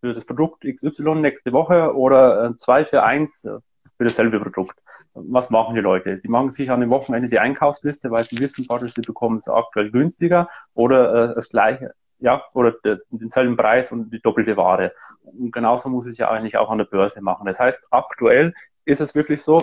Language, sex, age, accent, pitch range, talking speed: German, male, 30-49, German, 120-140 Hz, 195 wpm